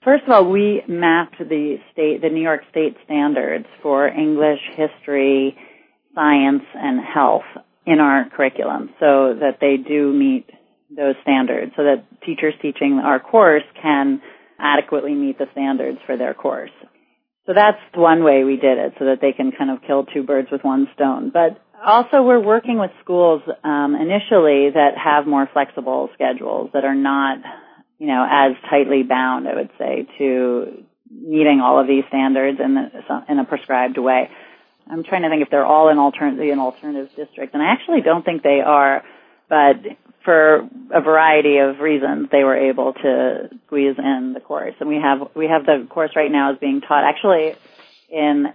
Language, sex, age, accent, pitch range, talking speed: English, female, 30-49, American, 140-160 Hz, 180 wpm